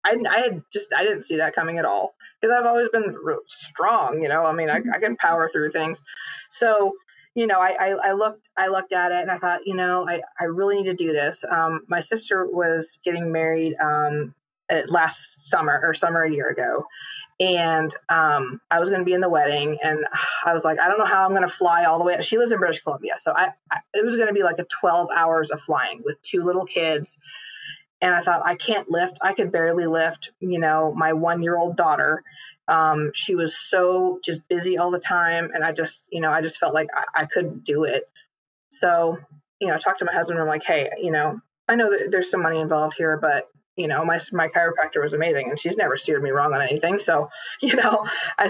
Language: English